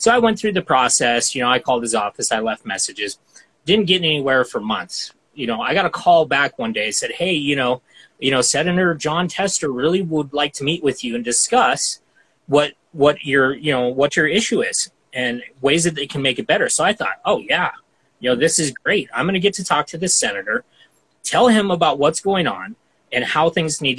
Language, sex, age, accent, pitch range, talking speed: English, male, 30-49, American, 130-175 Hz, 235 wpm